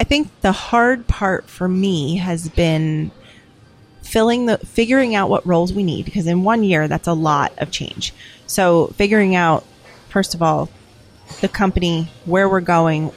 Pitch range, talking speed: 150-180 Hz, 170 wpm